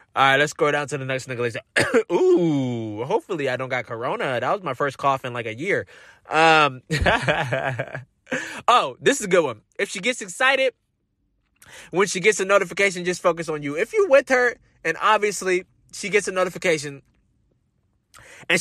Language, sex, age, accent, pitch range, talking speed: English, male, 20-39, American, 160-235 Hz, 175 wpm